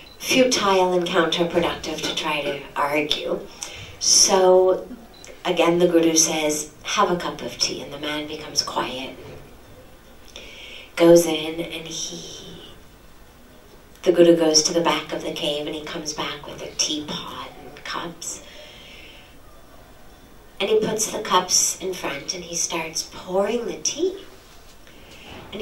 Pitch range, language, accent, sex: 165-210 Hz, English, American, female